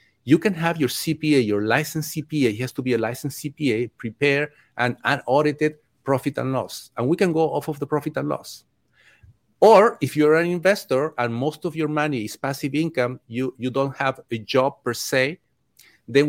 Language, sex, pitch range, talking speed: English, male, 125-150 Hz, 195 wpm